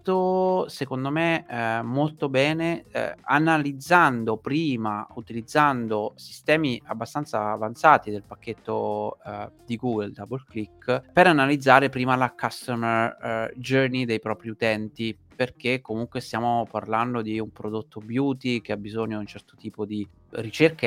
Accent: native